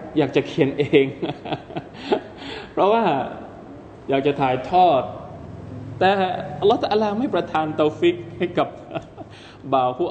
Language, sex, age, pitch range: Thai, male, 20-39, 125-175 Hz